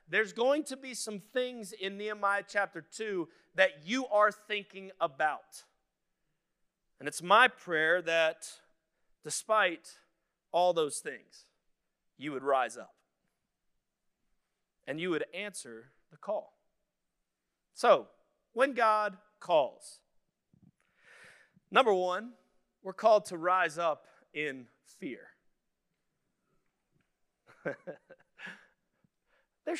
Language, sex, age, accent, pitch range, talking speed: English, male, 40-59, American, 165-215 Hz, 95 wpm